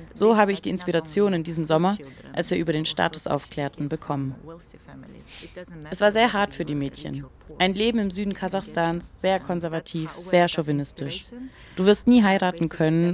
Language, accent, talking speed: German, German, 165 wpm